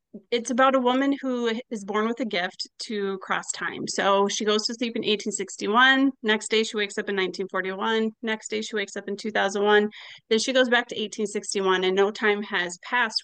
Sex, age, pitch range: female, 30-49, 195-235 Hz